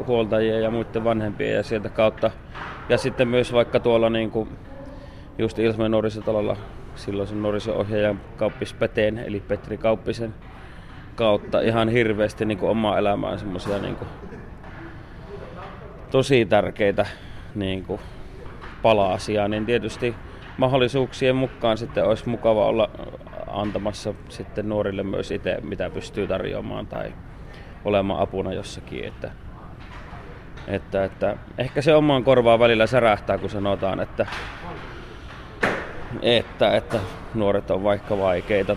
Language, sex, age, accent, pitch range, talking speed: Finnish, male, 30-49, native, 100-120 Hz, 115 wpm